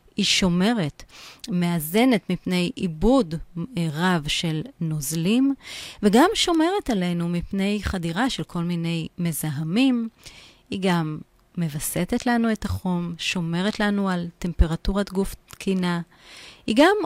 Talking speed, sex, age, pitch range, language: 110 wpm, female, 30-49, 170-245 Hz, Hebrew